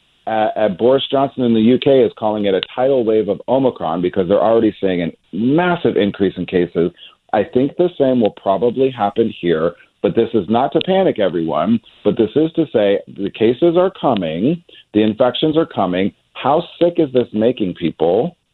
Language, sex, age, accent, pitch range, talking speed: English, male, 40-59, American, 105-140 Hz, 180 wpm